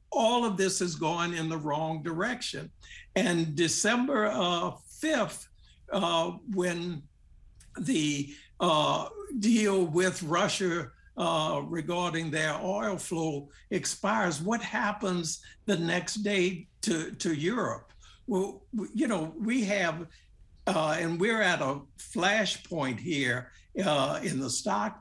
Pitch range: 160-195 Hz